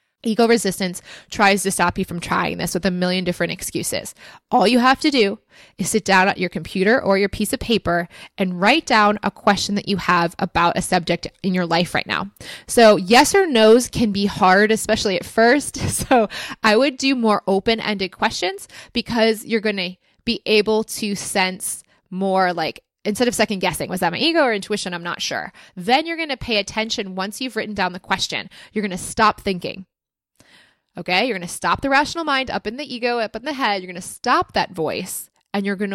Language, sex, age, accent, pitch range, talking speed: English, female, 20-39, American, 185-230 Hz, 210 wpm